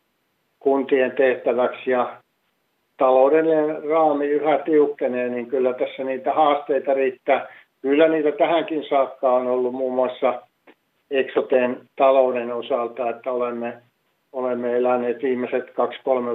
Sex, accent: male, native